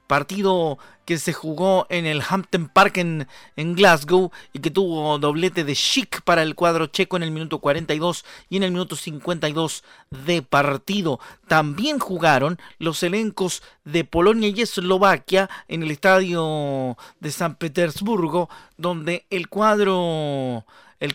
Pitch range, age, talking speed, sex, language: 150-190 Hz, 40-59, 140 wpm, male, Spanish